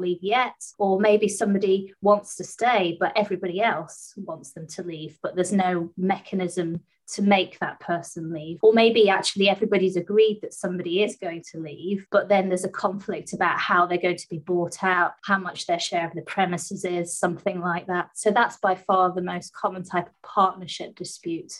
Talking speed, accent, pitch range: 195 wpm, British, 175-200 Hz